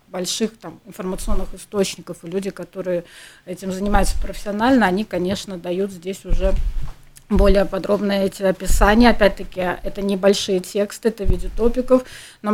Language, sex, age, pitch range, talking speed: Russian, female, 30-49, 180-215 Hz, 125 wpm